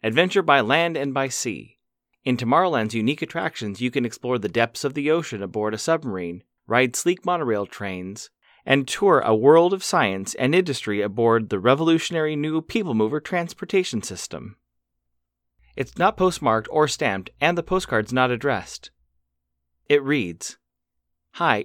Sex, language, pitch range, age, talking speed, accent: male, English, 110-160 Hz, 30-49, 145 wpm, American